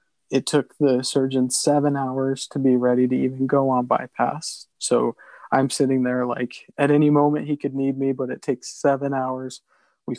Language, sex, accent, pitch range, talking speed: English, male, American, 130-145 Hz, 190 wpm